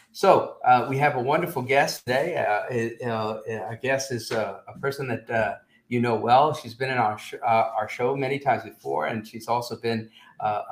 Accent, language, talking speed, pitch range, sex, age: American, English, 215 wpm, 110-140 Hz, male, 50-69